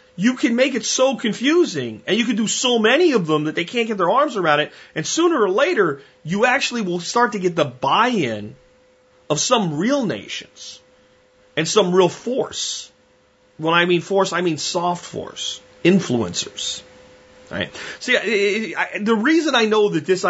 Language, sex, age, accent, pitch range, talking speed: English, male, 30-49, American, 135-215 Hz, 185 wpm